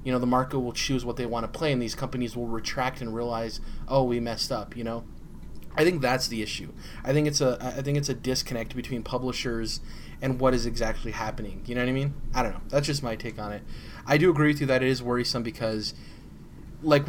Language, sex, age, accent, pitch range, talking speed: English, male, 20-39, American, 110-130 Hz, 245 wpm